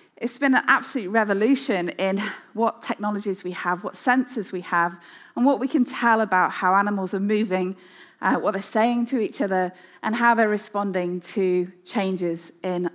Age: 20-39